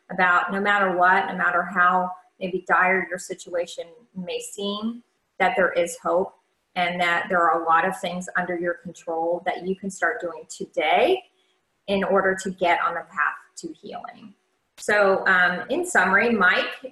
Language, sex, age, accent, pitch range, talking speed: English, female, 30-49, American, 185-235 Hz, 170 wpm